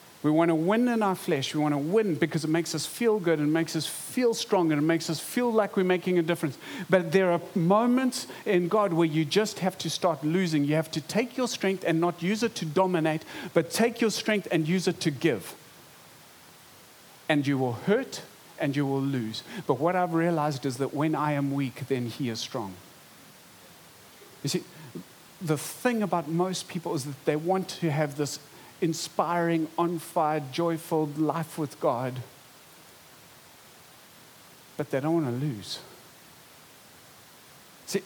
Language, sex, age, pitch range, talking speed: English, male, 40-59, 145-180 Hz, 185 wpm